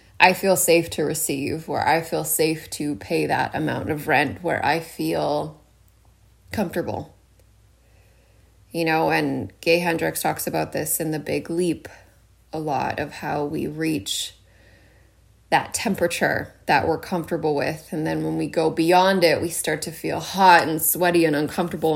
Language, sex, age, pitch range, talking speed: English, female, 20-39, 100-165 Hz, 160 wpm